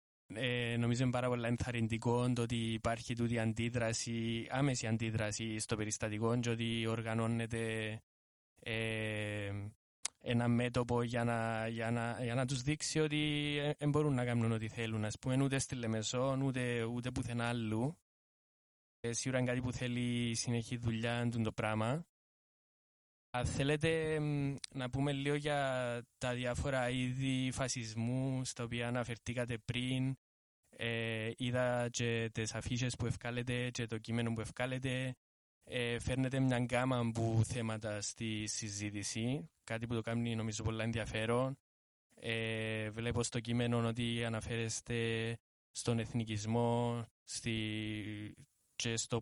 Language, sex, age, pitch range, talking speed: Greek, male, 20-39, 110-125 Hz, 115 wpm